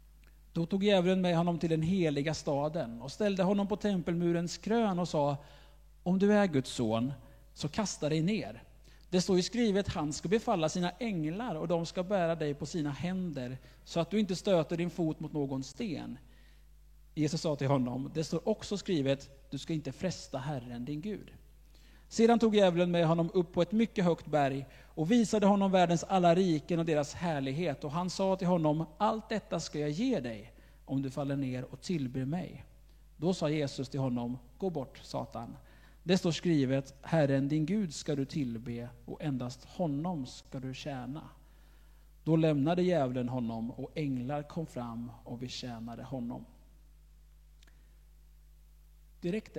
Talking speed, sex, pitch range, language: 170 wpm, male, 135-180 Hz, Swedish